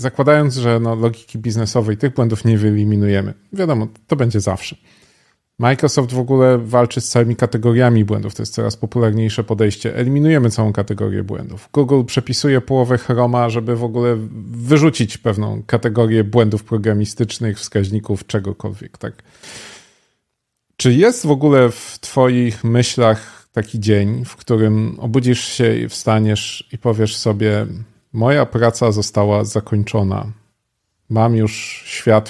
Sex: male